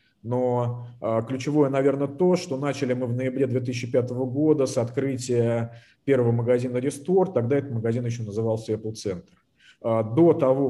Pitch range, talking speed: 115-135 Hz, 140 wpm